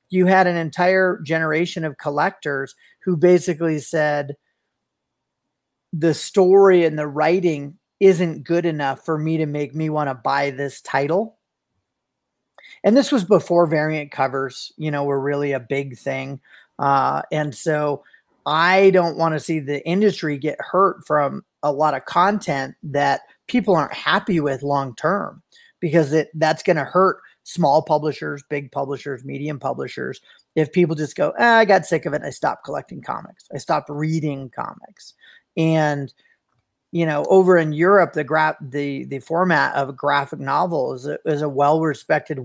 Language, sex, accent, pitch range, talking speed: English, male, American, 140-175 Hz, 160 wpm